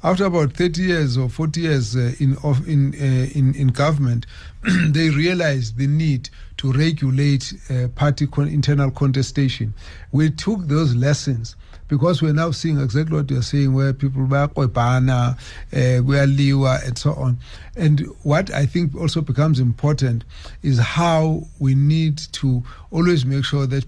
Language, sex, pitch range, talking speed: English, male, 125-150 Hz, 155 wpm